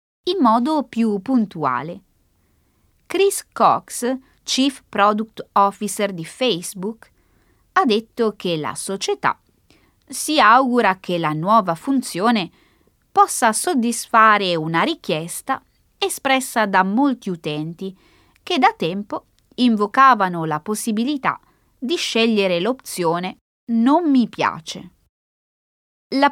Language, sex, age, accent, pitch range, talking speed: Italian, female, 20-39, native, 185-270 Hz, 100 wpm